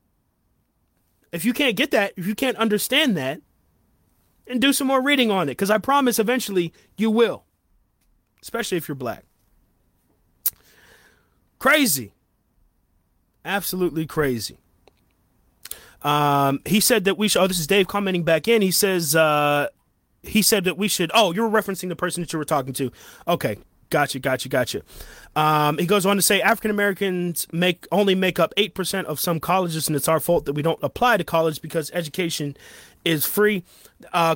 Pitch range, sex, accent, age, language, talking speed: 150-200 Hz, male, American, 30-49, English, 165 wpm